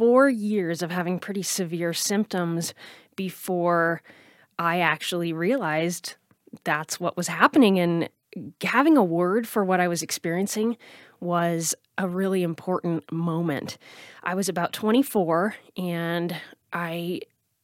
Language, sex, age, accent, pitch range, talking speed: English, female, 20-39, American, 170-220 Hz, 120 wpm